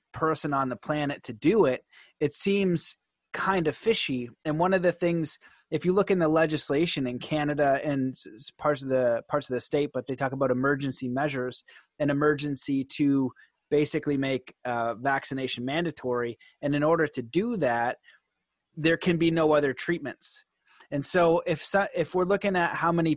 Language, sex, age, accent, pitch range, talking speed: English, male, 30-49, American, 135-160 Hz, 175 wpm